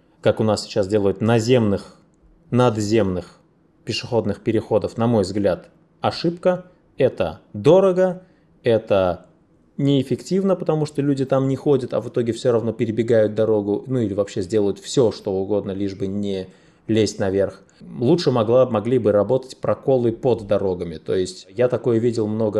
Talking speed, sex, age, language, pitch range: 150 wpm, male, 20-39, Russian, 100-135 Hz